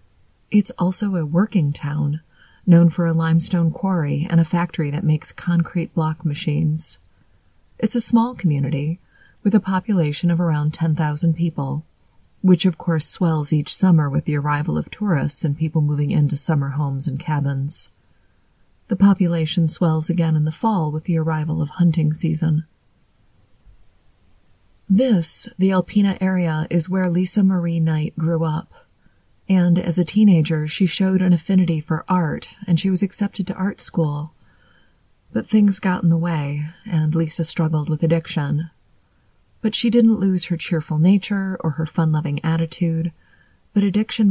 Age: 30-49